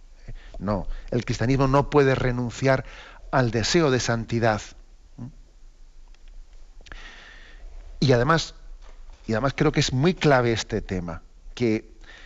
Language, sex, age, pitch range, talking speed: Spanish, male, 50-69, 110-140 Hz, 110 wpm